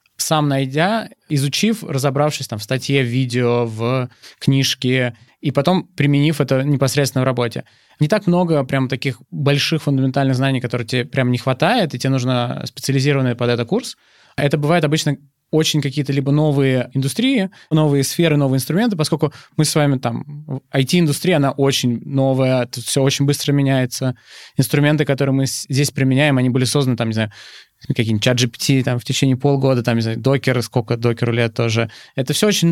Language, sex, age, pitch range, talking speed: Russian, male, 20-39, 125-150 Hz, 165 wpm